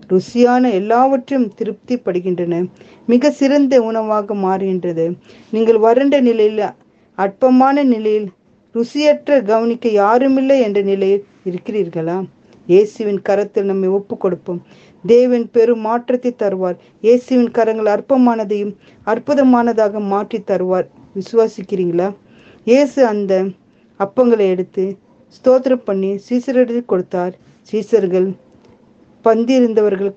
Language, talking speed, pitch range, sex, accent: Tamil, 90 wpm, 195-235 Hz, female, native